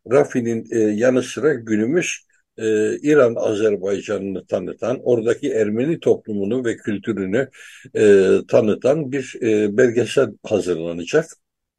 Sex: male